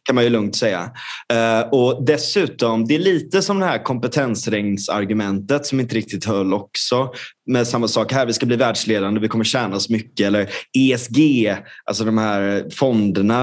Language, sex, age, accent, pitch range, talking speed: Swedish, male, 20-39, native, 100-135 Hz, 175 wpm